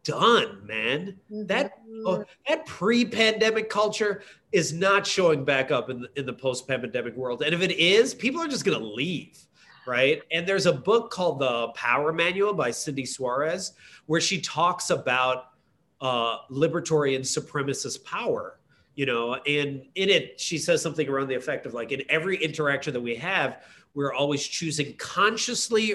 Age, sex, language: 30-49, male, English